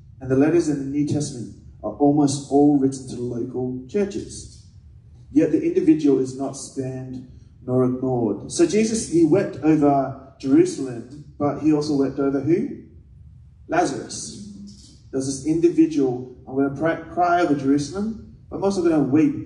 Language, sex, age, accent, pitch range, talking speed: English, male, 20-39, Australian, 125-165 Hz, 160 wpm